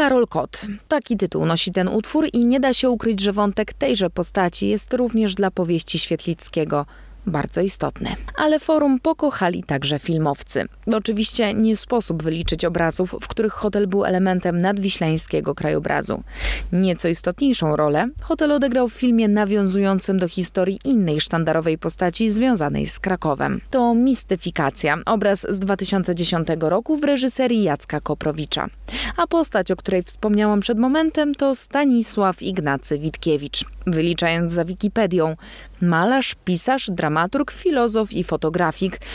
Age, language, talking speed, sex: 20-39, Polish, 130 wpm, female